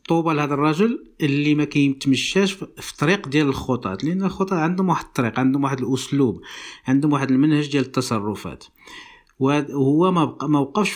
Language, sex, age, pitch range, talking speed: Arabic, male, 50-69, 130-155 Hz, 150 wpm